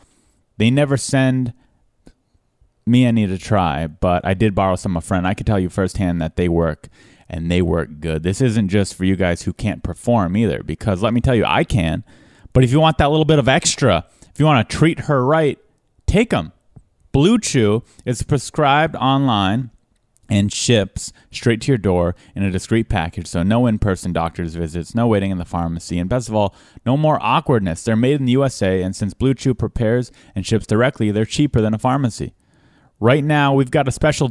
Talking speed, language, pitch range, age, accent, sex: 205 wpm, English, 95-140 Hz, 30-49, American, male